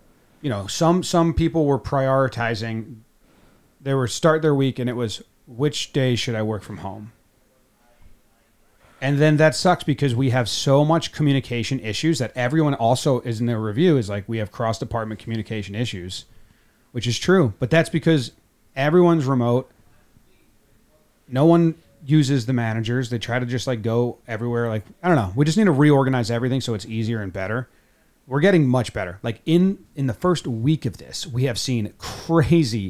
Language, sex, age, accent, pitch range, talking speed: English, male, 30-49, American, 110-145 Hz, 180 wpm